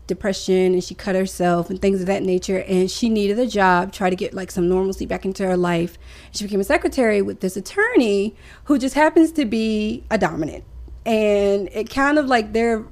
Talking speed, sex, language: 210 wpm, female, English